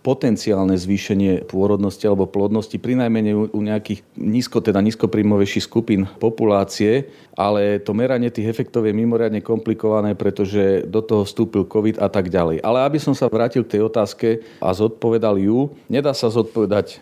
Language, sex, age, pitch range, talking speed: Slovak, male, 40-59, 100-115 Hz, 150 wpm